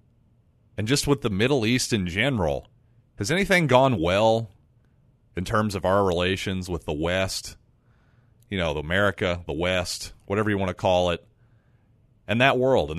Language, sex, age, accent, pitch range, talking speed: English, male, 40-59, American, 95-125 Hz, 165 wpm